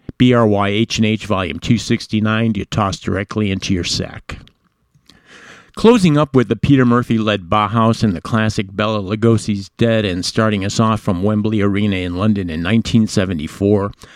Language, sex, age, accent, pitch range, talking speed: English, male, 50-69, American, 105-120 Hz, 155 wpm